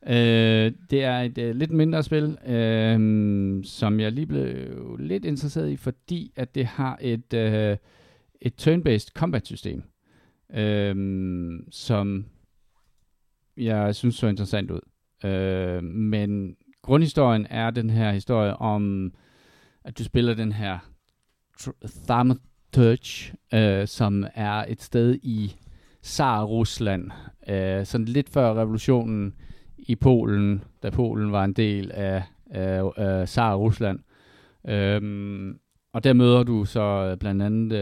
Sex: male